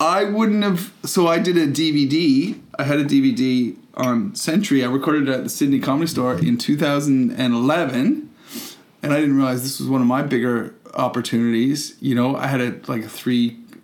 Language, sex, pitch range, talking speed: English, male, 135-180 Hz, 185 wpm